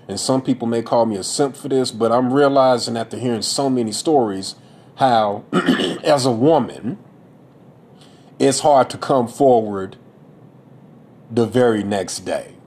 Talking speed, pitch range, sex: 145 wpm, 110-135 Hz, male